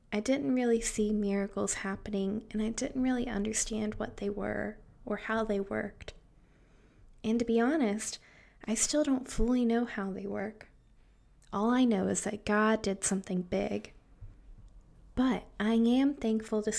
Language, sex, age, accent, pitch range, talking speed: English, female, 20-39, American, 200-230 Hz, 155 wpm